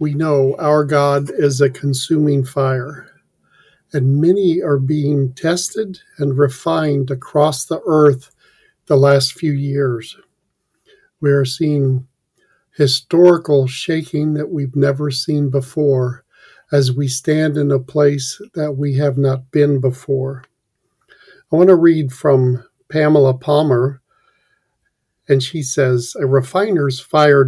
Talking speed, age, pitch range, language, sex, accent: 125 wpm, 50-69, 135-155 Hz, English, male, American